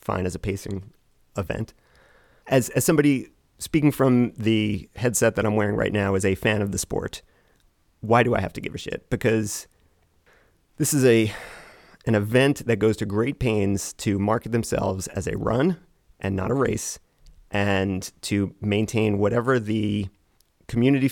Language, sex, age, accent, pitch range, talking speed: English, male, 30-49, American, 100-120 Hz, 165 wpm